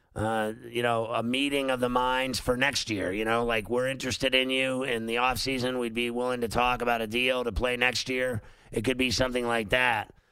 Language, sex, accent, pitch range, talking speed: English, male, American, 115-130 Hz, 225 wpm